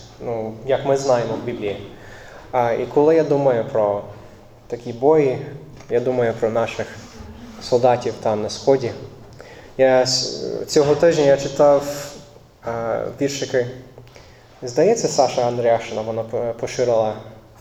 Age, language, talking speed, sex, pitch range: 20-39, Ukrainian, 105 wpm, male, 110-135 Hz